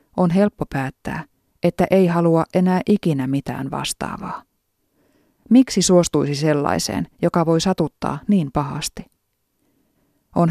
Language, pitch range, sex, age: Finnish, 145-185 Hz, female, 30-49